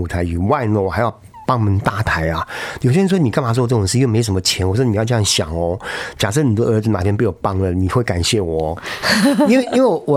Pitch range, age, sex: 95-125 Hz, 50-69, male